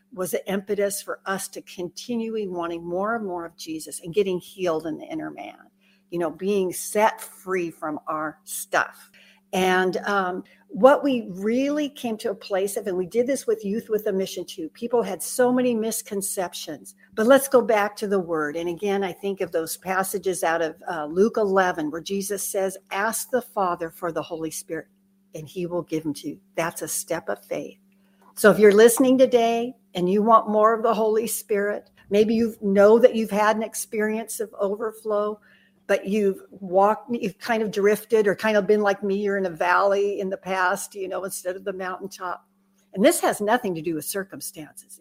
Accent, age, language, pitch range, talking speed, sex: American, 60-79, English, 185-215 Hz, 200 wpm, female